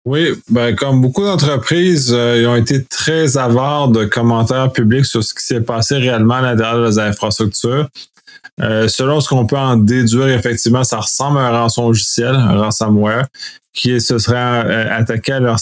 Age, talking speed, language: 20-39, 175 wpm, French